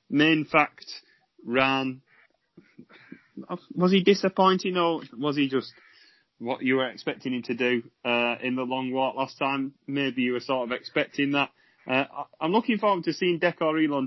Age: 30-49